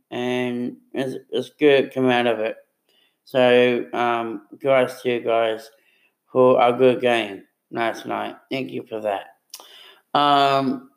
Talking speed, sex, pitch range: 135 wpm, male, 125-155 Hz